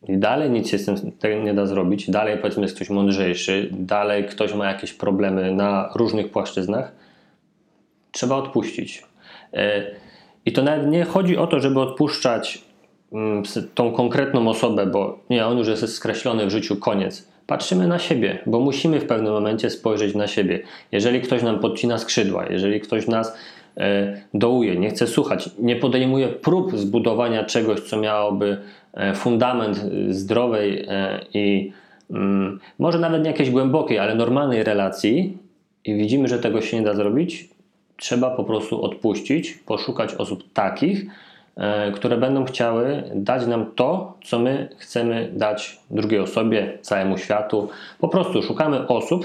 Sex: male